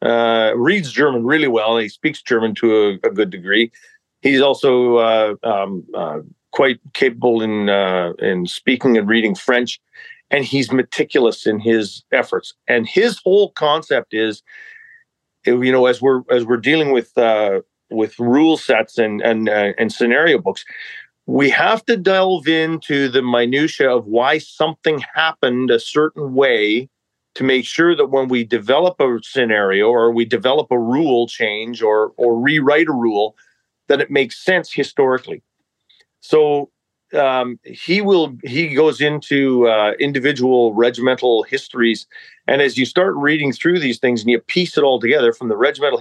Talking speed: 160 wpm